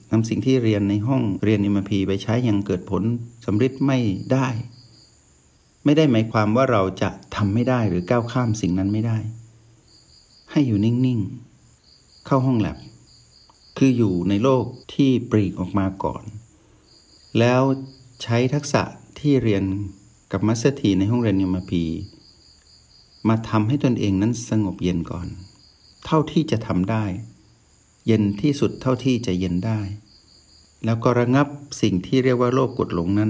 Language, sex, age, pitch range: Thai, male, 60-79, 95-125 Hz